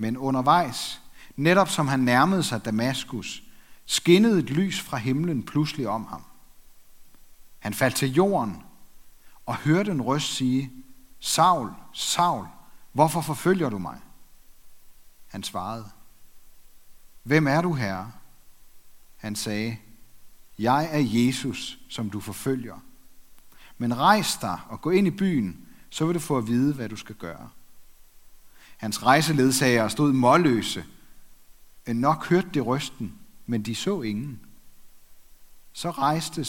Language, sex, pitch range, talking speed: Danish, male, 115-150 Hz, 130 wpm